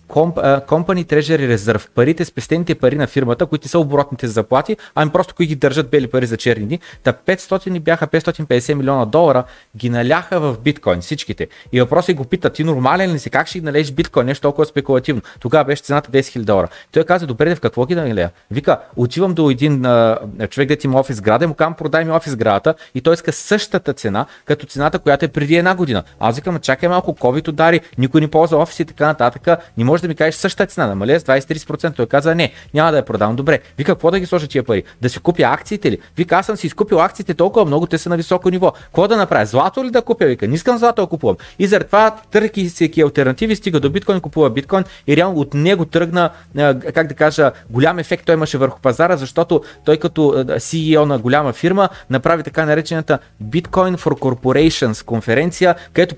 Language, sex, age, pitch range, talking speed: Bulgarian, male, 30-49, 130-170 Hz, 215 wpm